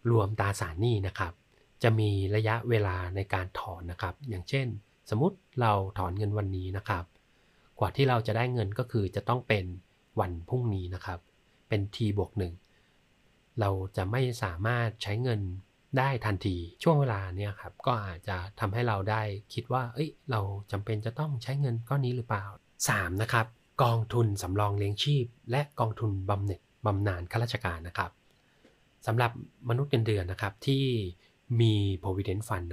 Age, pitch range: 30-49, 95-120 Hz